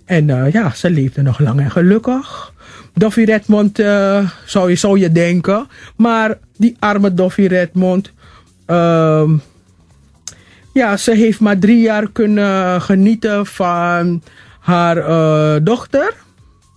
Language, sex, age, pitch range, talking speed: Dutch, male, 50-69, 140-185 Hz, 125 wpm